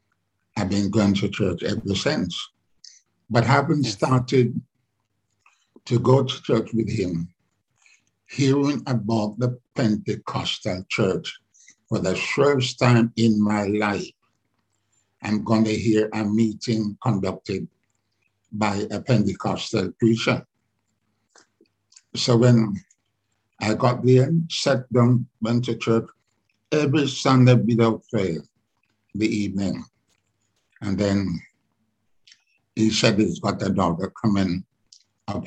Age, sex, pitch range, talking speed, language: 60-79, male, 105-125 Hz, 110 wpm, English